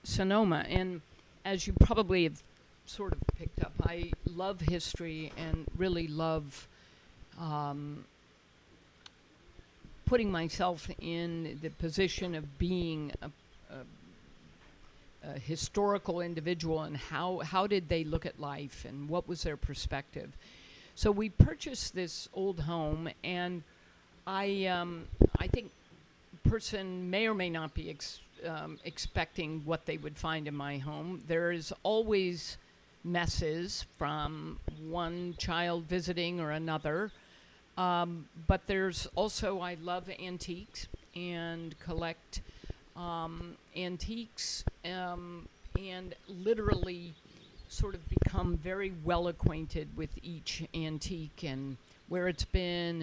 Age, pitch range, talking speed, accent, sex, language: 50-69, 155-180 Hz, 120 wpm, American, female, English